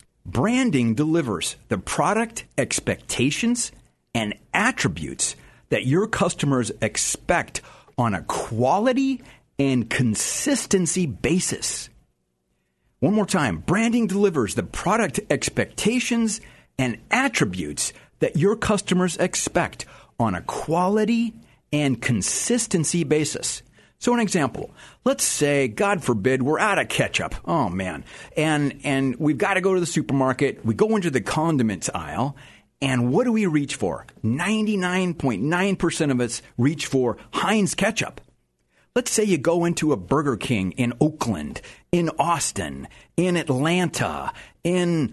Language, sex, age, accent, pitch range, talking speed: English, male, 50-69, American, 130-200 Hz, 125 wpm